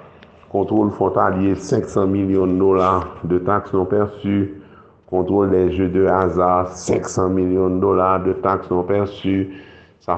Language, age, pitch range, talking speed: French, 50-69, 90-105 Hz, 140 wpm